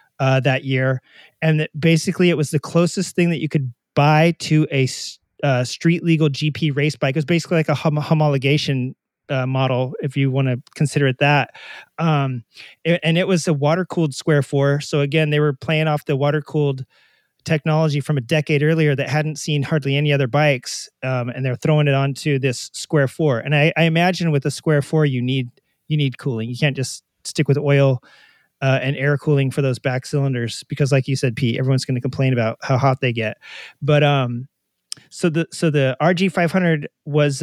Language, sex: English, male